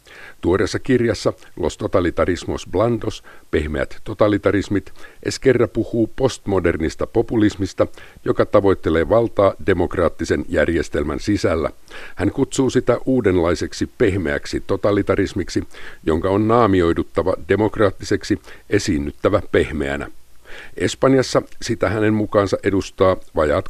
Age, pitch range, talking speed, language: 50-69, 90-110 Hz, 90 wpm, Finnish